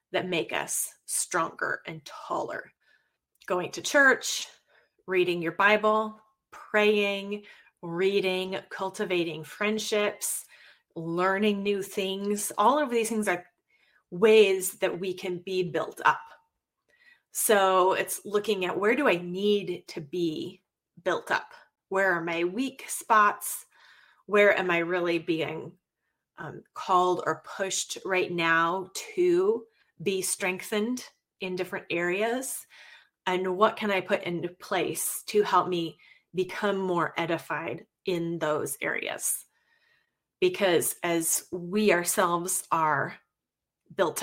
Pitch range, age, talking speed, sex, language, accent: 175-210 Hz, 30-49, 120 wpm, female, English, American